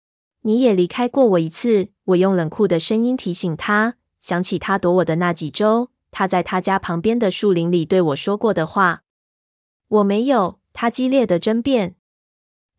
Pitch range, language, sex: 180-230 Hz, Chinese, female